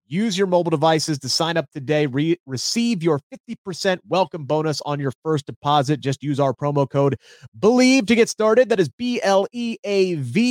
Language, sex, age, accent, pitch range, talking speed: English, male, 30-49, American, 135-180 Hz, 195 wpm